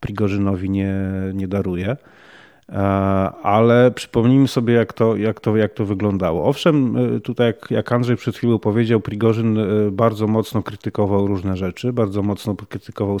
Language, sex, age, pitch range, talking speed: Polish, male, 40-59, 105-120 Hz, 135 wpm